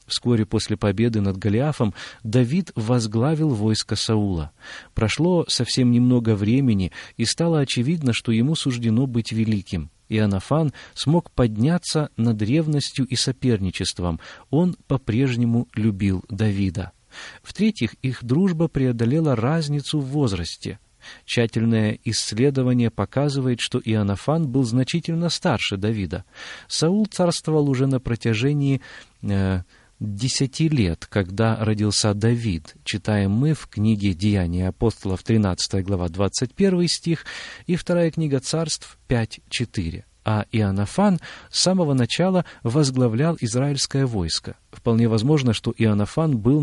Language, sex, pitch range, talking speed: Russian, male, 105-140 Hz, 110 wpm